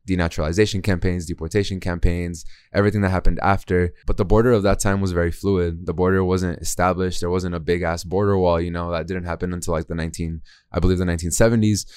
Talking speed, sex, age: 200 wpm, male, 20-39